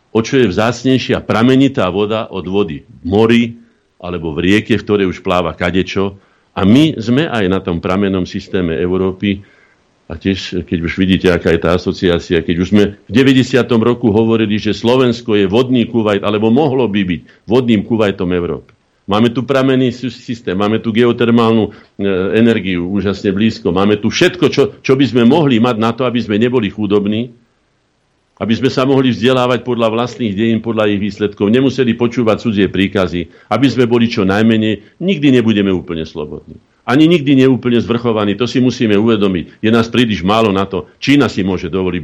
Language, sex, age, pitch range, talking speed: Slovak, male, 50-69, 95-120 Hz, 175 wpm